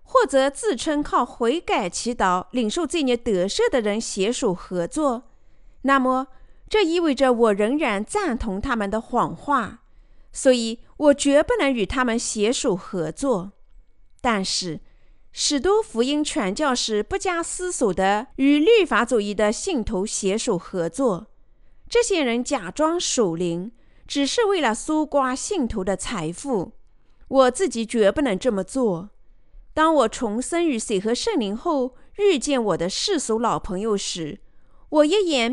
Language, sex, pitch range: Chinese, female, 210-300 Hz